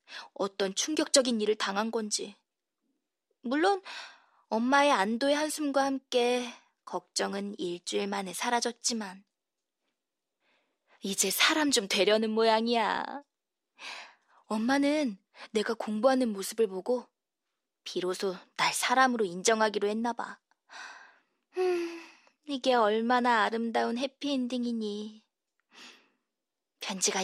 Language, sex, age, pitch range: Korean, female, 20-39, 200-260 Hz